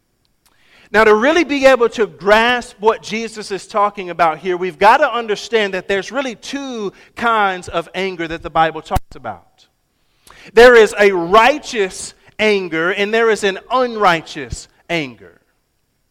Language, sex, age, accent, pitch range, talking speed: English, male, 40-59, American, 195-240 Hz, 150 wpm